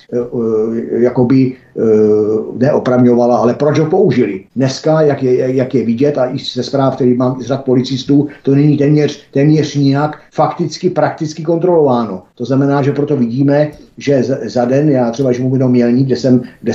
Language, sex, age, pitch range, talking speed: Czech, male, 50-69, 130-150 Hz, 160 wpm